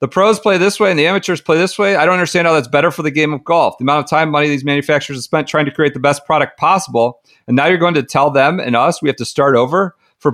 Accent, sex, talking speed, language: American, male, 310 wpm, English